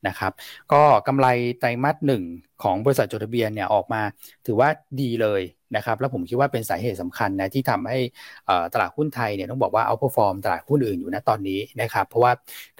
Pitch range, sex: 105-135 Hz, male